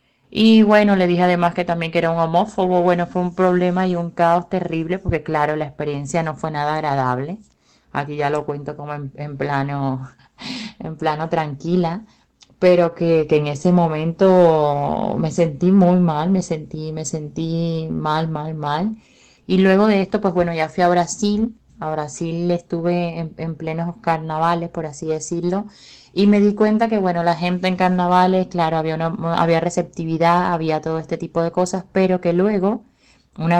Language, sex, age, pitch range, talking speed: Spanish, female, 20-39, 155-180 Hz, 180 wpm